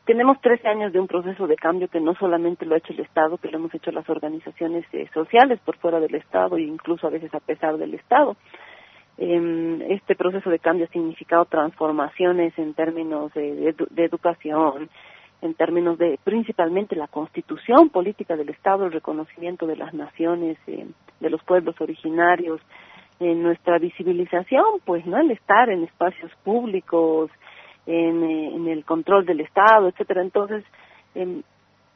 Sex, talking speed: female, 165 wpm